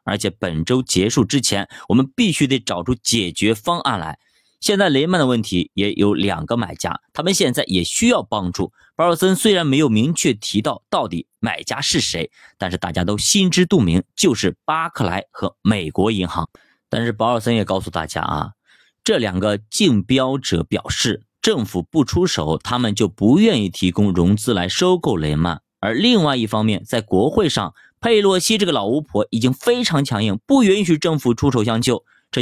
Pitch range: 95-145 Hz